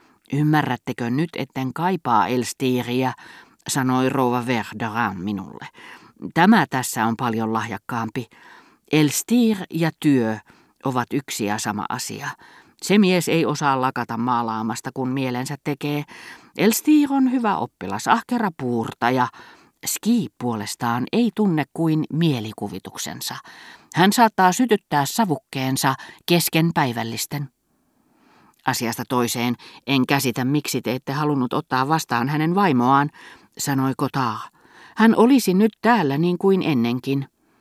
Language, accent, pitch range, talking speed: Finnish, native, 125-165 Hz, 110 wpm